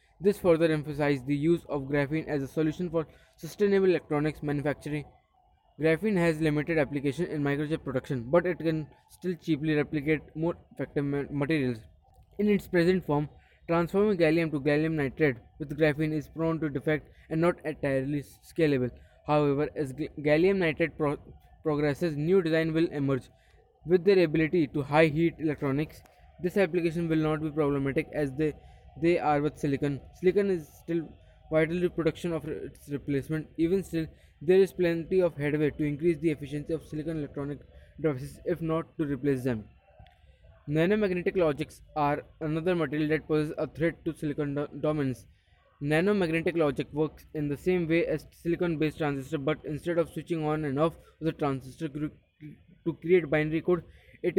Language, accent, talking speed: English, Indian, 160 wpm